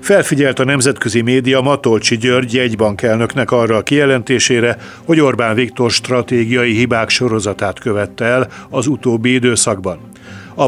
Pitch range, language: 110-130 Hz, Hungarian